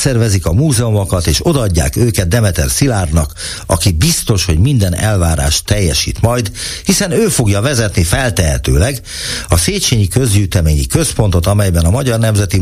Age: 60-79